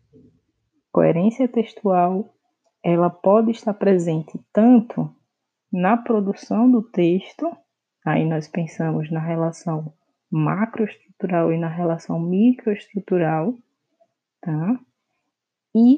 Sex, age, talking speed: female, 20-39, 85 wpm